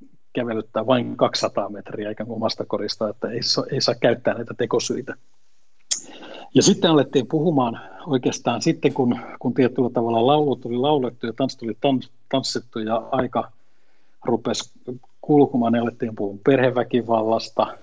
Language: Finnish